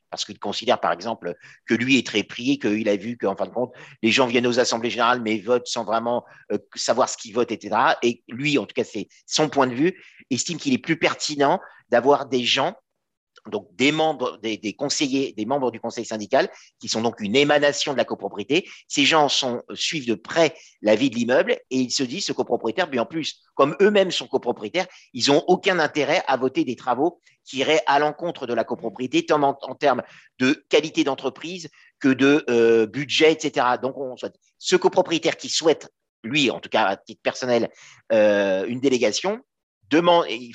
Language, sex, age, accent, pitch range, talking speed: French, male, 50-69, French, 115-150 Hz, 200 wpm